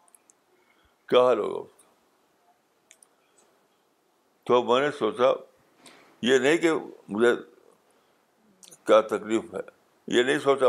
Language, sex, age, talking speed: Urdu, male, 60-79, 90 wpm